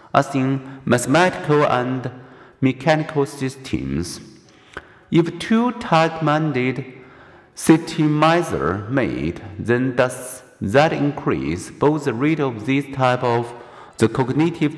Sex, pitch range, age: male, 115-150 Hz, 50-69